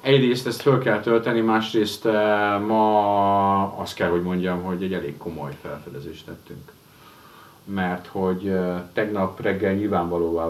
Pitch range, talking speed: 85-110 Hz, 125 wpm